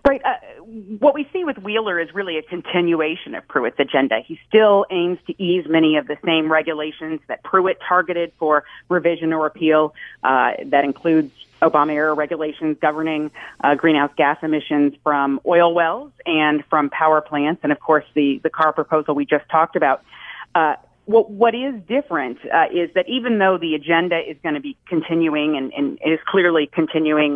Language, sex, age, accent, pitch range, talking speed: English, female, 40-59, American, 150-185 Hz, 180 wpm